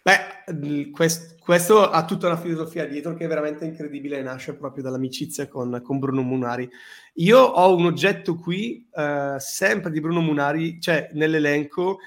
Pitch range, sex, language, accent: 145-175 Hz, male, Italian, native